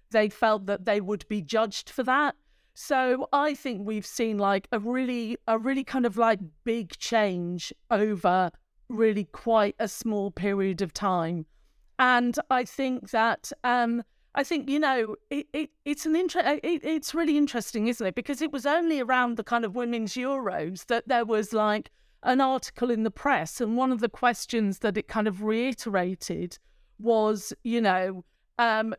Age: 40-59